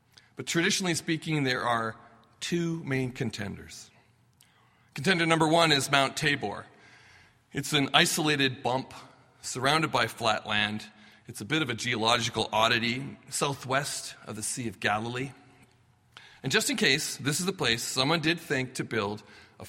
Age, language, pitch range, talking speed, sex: 40-59, English, 115-155 Hz, 150 wpm, male